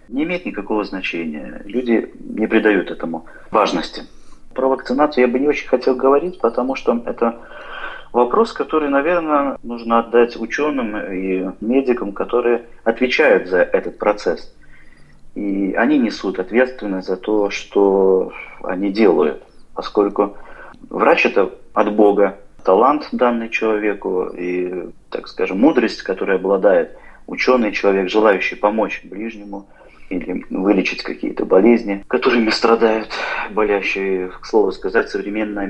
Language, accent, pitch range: Russian, native, 95-125 Hz